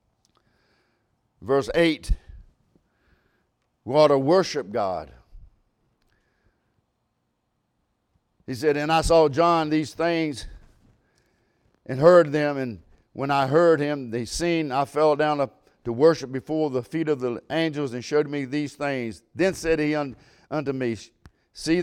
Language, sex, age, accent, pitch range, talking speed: English, male, 50-69, American, 135-170 Hz, 130 wpm